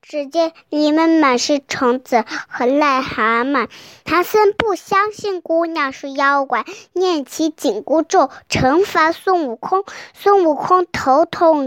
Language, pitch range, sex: Chinese, 270-370 Hz, male